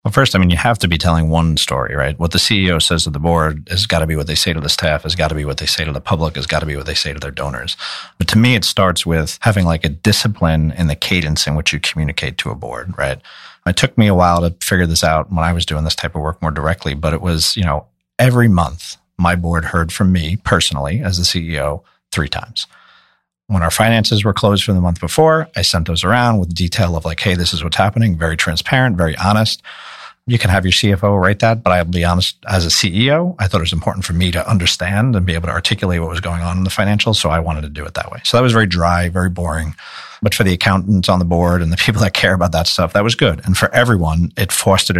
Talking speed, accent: 275 wpm, American